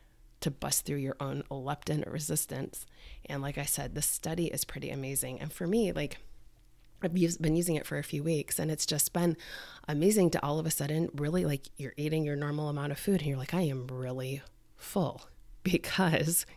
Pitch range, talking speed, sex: 135-160 Hz, 200 wpm, female